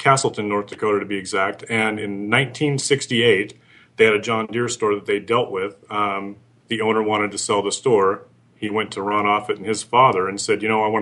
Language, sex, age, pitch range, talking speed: English, male, 30-49, 105-120 Hz, 225 wpm